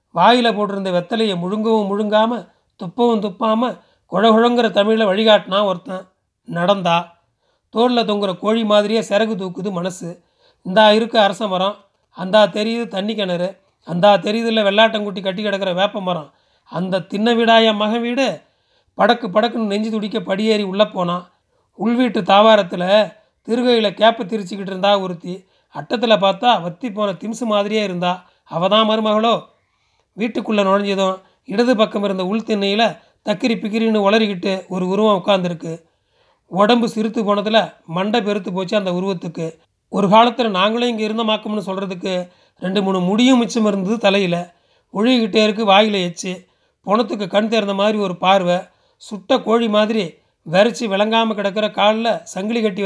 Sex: male